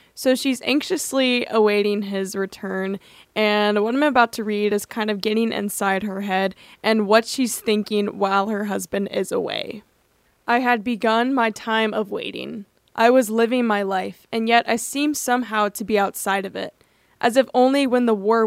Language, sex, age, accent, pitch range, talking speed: English, female, 10-29, American, 210-245 Hz, 180 wpm